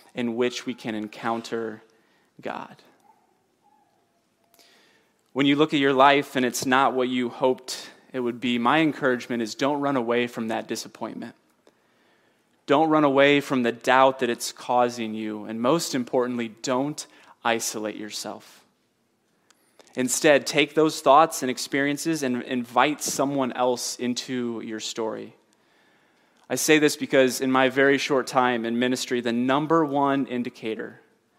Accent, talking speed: American, 140 wpm